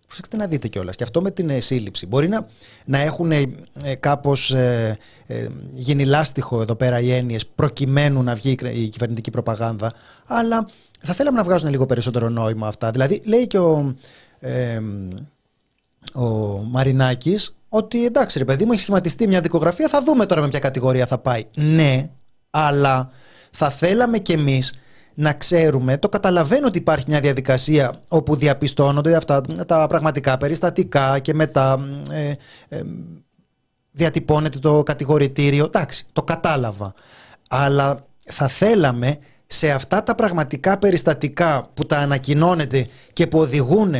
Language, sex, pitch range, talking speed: Greek, male, 130-165 Hz, 140 wpm